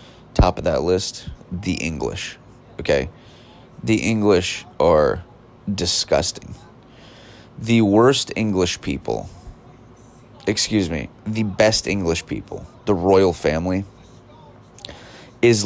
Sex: male